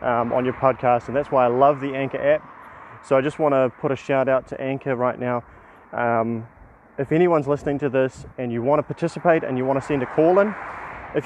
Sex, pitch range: male, 125-155 Hz